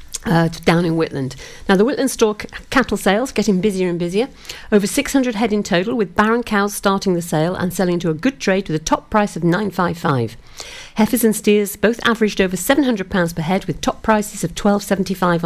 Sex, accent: female, British